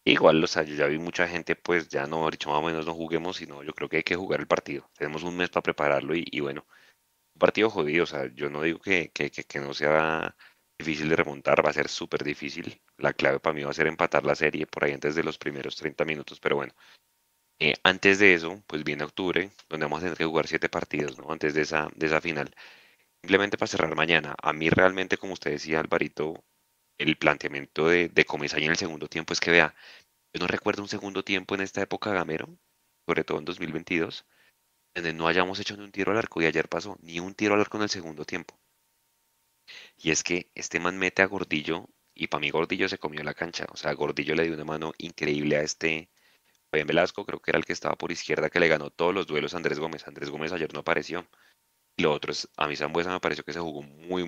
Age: 30-49